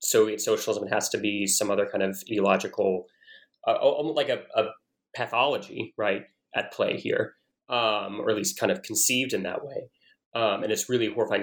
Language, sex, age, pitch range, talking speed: English, male, 20-39, 105-165 Hz, 185 wpm